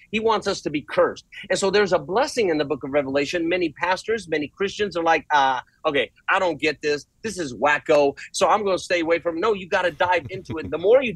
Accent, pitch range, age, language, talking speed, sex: American, 150-190 Hz, 30-49, English, 265 wpm, male